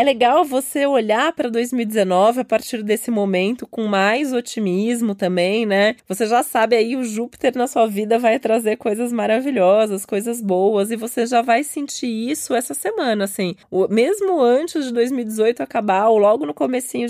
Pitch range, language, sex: 210-255 Hz, Portuguese, female